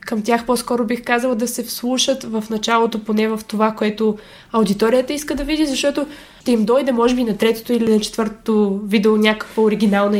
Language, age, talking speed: Bulgarian, 20-39, 190 wpm